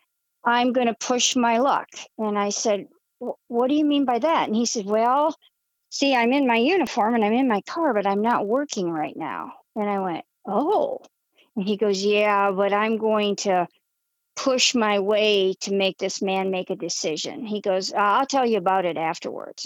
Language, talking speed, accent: English, 200 wpm, American